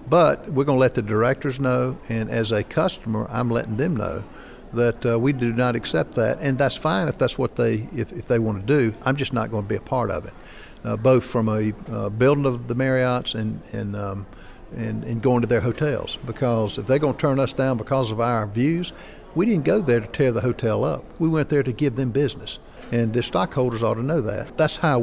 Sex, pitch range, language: male, 115-135 Hz, English